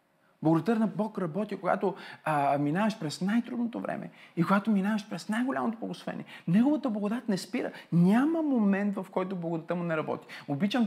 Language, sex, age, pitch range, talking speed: Bulgarian, male, 40-59, 170-235 Hz, 160 wpm